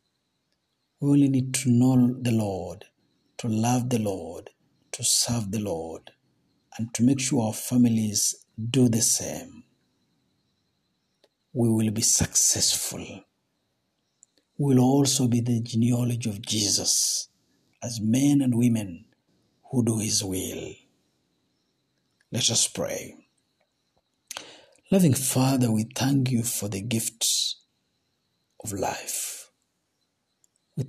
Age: 60-79